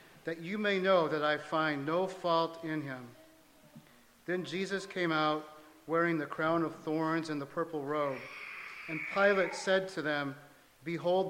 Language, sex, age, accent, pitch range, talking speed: English, male, 50-69, American, 155-185 Hz, 160 wpm